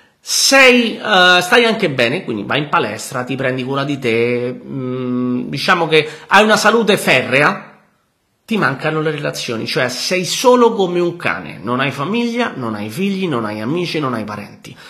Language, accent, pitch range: Italian, native, 130-200 Hz